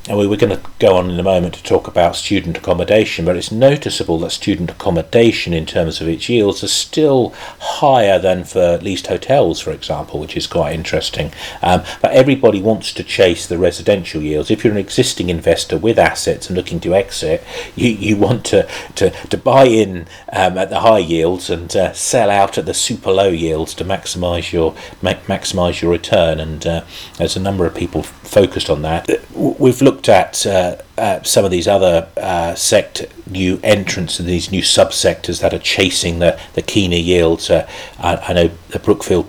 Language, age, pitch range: English, 40-59, 85-100 Hz